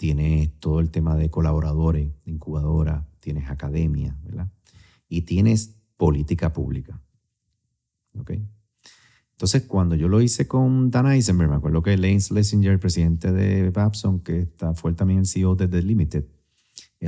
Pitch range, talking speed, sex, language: 80-105 Hz, 145 wpm, male, Spanish